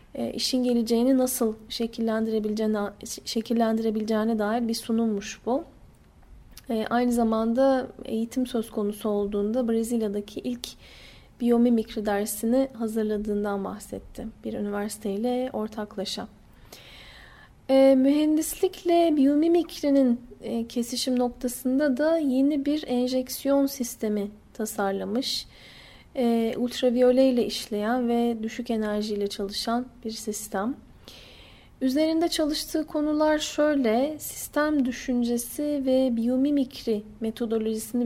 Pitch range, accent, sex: 215-260 Hz, native, female